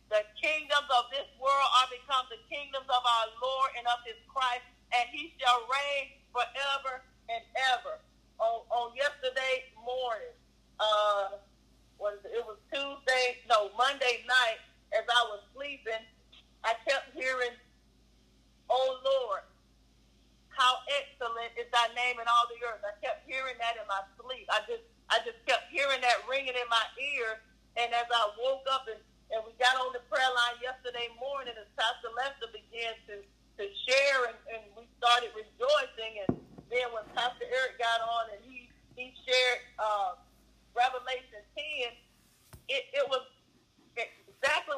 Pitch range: 225-265 Hz